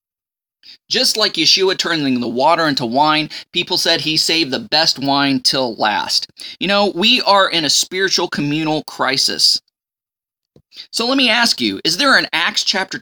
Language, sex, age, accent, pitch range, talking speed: English, male, 20-39, American, 145-210 Hz, 165 wpm